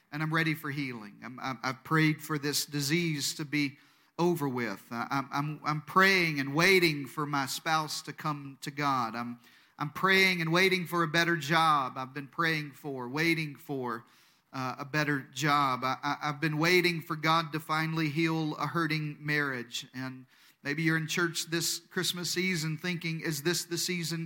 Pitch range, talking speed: 140-170 Hz, 180 wpm